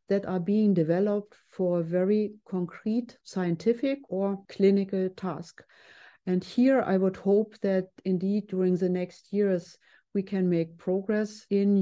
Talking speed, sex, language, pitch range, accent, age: 140 wpm, female, English, 170-195 Hz, German, 40-59